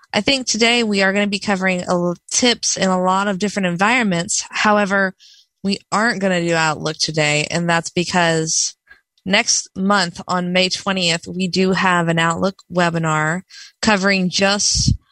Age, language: 20-39, English